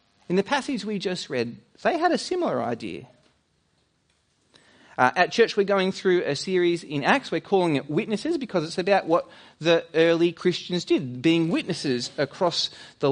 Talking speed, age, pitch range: 170 wpm, 30-49, 140-205 Hz